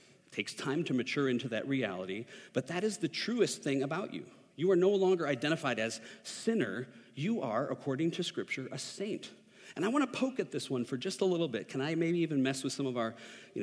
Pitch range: 125-170 Hz